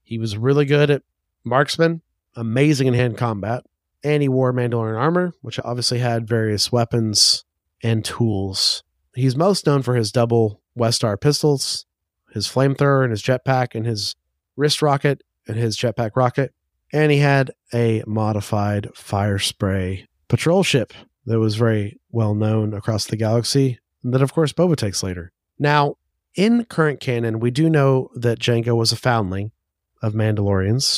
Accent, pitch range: American, 110-135 Hz